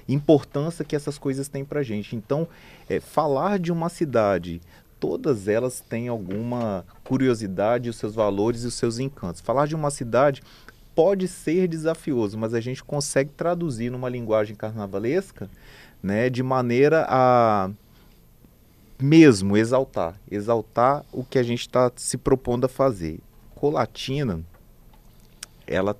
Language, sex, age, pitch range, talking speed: Portuguese, male, 30-49, 110-145 Hz, 135 wpm